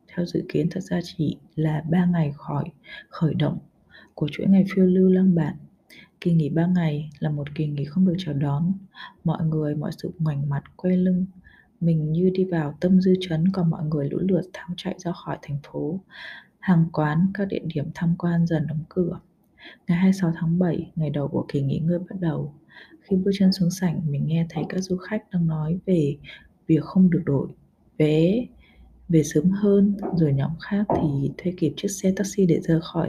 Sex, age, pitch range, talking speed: female, 20-39, 155-185 Hz, 205 wpm